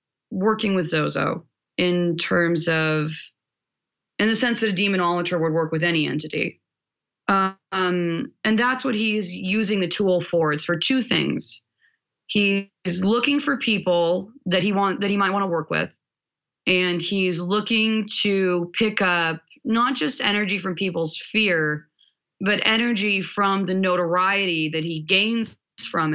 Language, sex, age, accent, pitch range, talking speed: English, female, 20-39, American, 160-205 Hz, 150 wpm